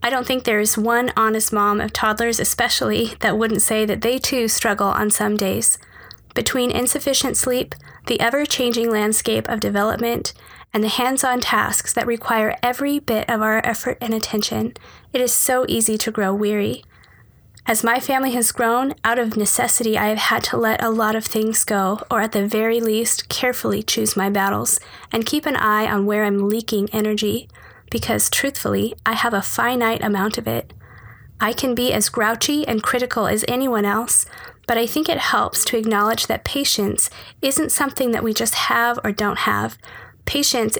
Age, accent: 20-39, American